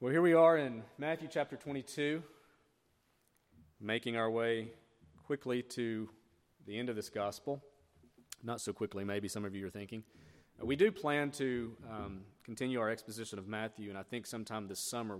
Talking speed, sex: 175 wpm, male